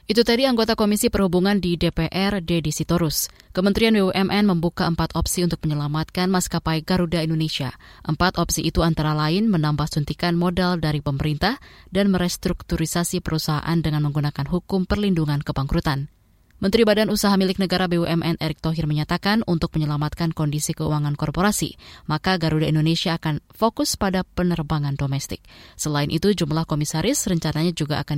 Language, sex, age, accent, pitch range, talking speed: Indonesian, female, 20-39, native, 155-190 Hz, 140 wpm